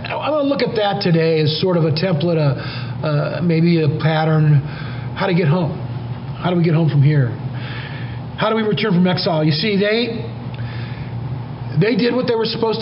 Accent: American